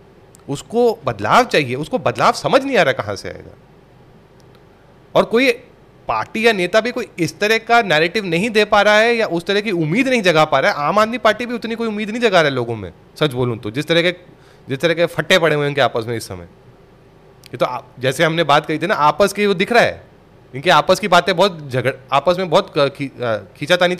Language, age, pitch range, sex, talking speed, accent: Hindi, 30-49, 135-215 Hz, male, 235 wpm, native